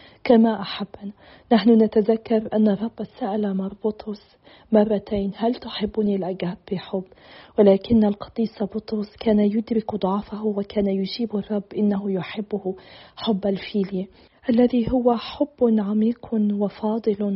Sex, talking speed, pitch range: female, 105 wpm, 205-225 Hz